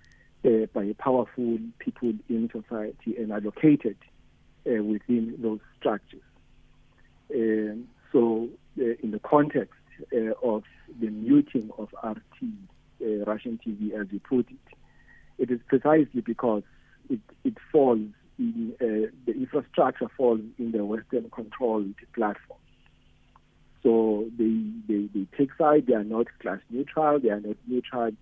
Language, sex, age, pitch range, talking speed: English, male, 50-69, 105-140 Hz, 120 wpm